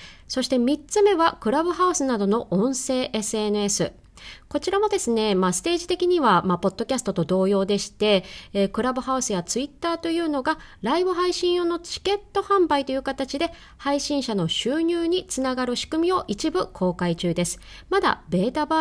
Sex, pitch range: female, 205-325 Hz